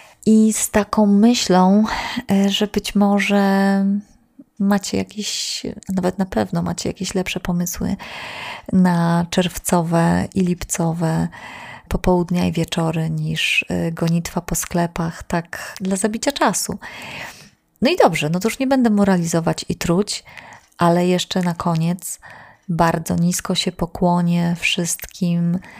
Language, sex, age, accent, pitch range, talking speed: Polish, female, 30-49, native, 170-195 Hz, 120 wpm